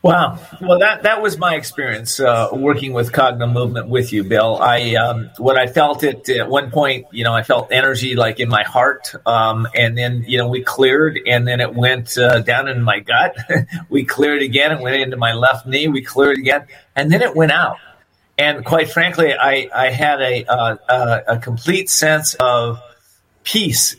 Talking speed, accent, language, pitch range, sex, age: 200 wpm, American, English, 120-150 Hz, male, 40-59